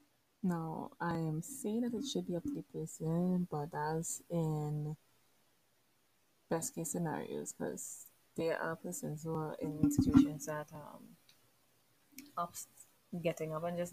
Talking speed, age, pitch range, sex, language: 135 wpm, 20-39, 155-190 Hz, female, English